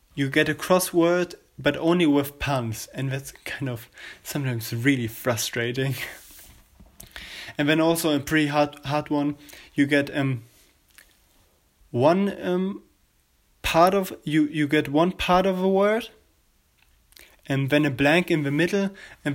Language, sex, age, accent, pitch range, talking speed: English, male, 20-39, German, 125-160 Hz, 145 wpm